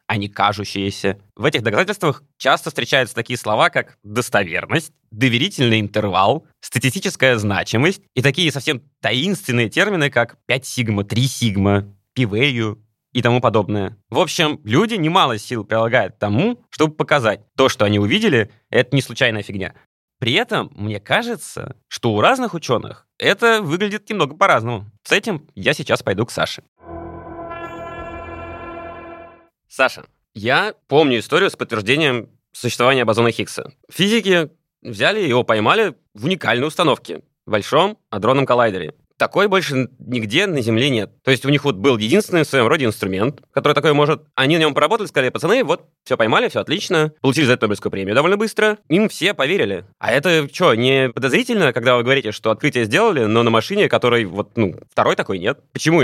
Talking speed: 160 wpm